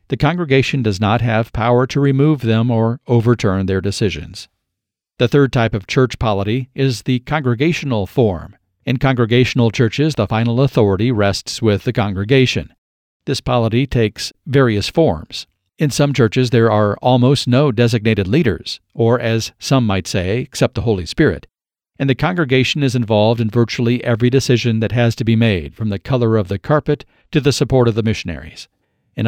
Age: 50-69